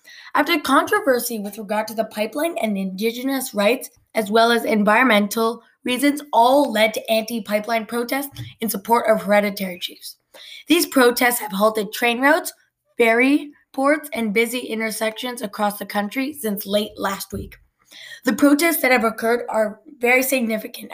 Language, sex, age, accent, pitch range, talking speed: English, female, 10-29, American, 215-275 Hz, 145 wpm